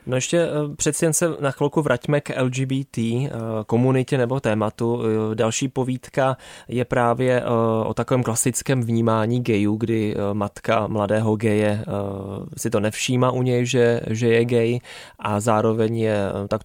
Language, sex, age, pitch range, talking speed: Czech, male, 20-39, 110-125 Hz, 140 wpm